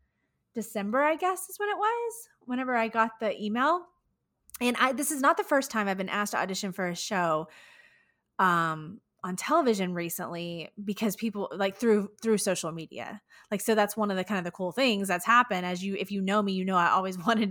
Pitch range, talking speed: 180-225 Hz, 215 wpm